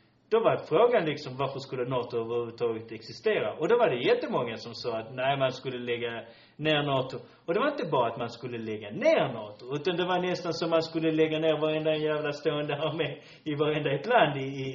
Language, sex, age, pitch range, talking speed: Swedish, male, 30-49, 125-165 Hz, 225 wpm